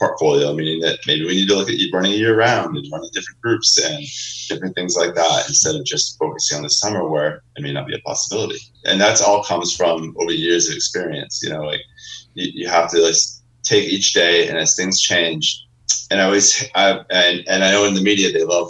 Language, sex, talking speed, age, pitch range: English, male, 240 wpm, 30-49, 90-135 Hz